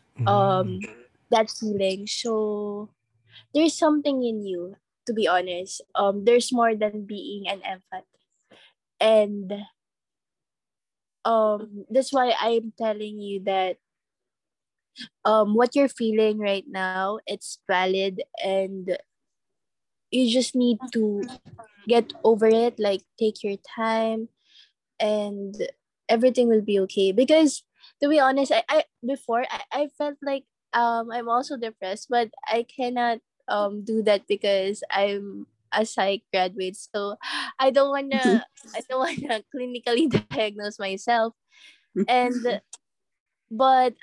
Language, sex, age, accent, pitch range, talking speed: English, female, 20-39, Filipino, 200-250 Hz, 120 wpm